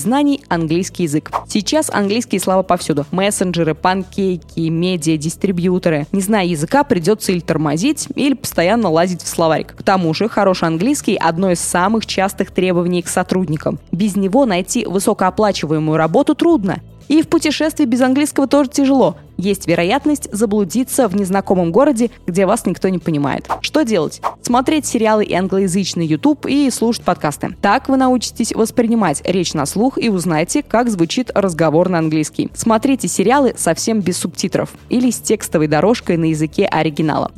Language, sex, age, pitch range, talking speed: Russian, female, 20-39, 175-235 Hz, 155 wpm